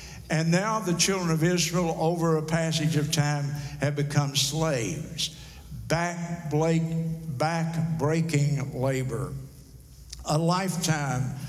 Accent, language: American, English